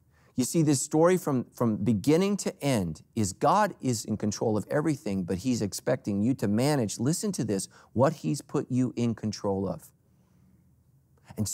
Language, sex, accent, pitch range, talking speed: English, male, American, 100-140 Hz, 170 wpm